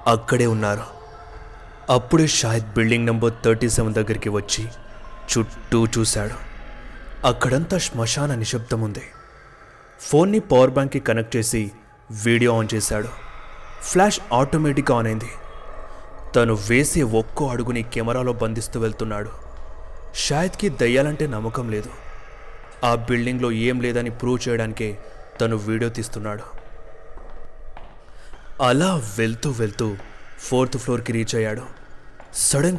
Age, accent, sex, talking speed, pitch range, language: 30-49, native, male, 95 wpm, 115-145 Hz, Telugu